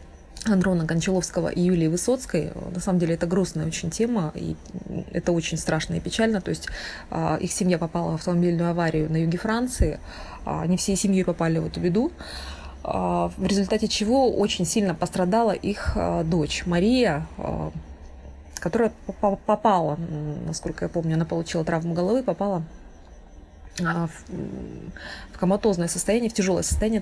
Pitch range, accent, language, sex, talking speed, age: 160-190 Hz, native, Russian, female, 135 wpm, 20-39